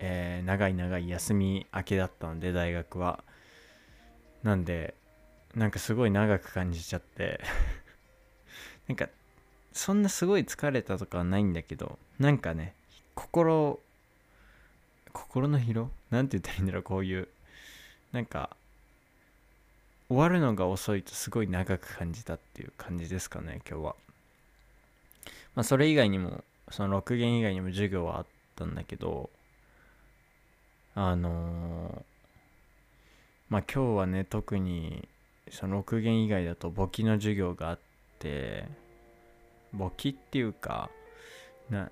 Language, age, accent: Japanese, 20-39, native